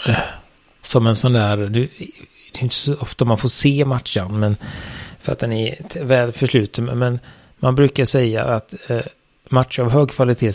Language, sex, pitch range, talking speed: Swedish, male, 110-135 Hz, 165 wpm